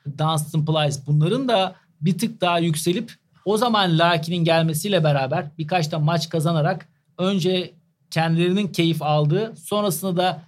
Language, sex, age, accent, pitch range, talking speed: Turkish, male, 40-59, native, 155-195 Hz, 130 wpm